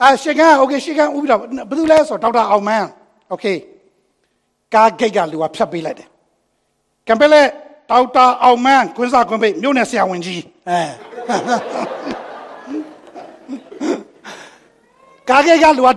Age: 60-79